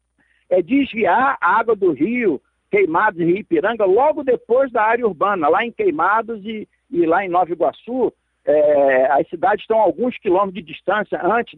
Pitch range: 175-265 Hz